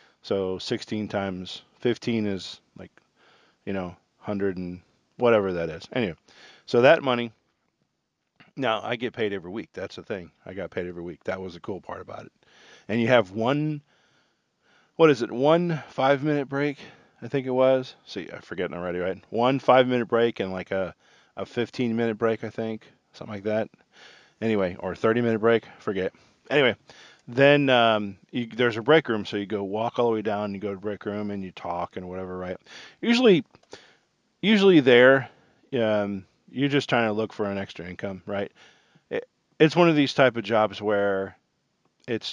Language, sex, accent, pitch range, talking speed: English, male, American, 100-125 Hz, 180 wpm